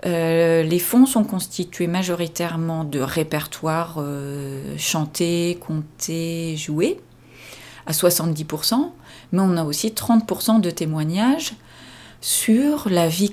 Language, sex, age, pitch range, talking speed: French, female, 40-59, 165-210 Hz, 110 wpm